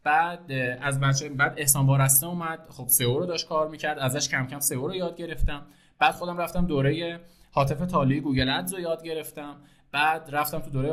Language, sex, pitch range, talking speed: Persian, male, 140-195 Hz, 200 wpm